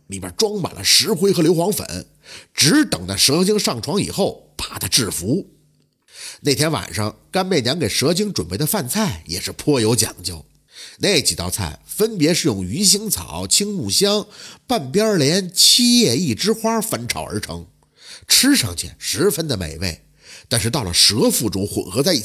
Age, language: 50-69, Chinese